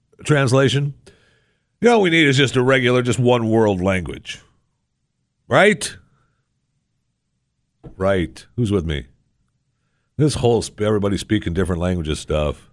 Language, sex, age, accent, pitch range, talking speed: English, male, 60-79, American, 90-125 Hz, 120 wpm